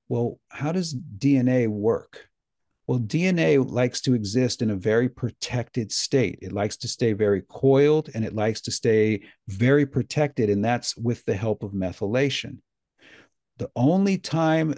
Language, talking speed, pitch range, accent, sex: English, 155 wpm, 105-135 Hz, American, male